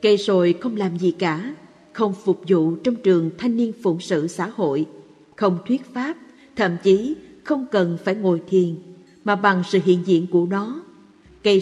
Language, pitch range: Vietnamese, 180-225 Hz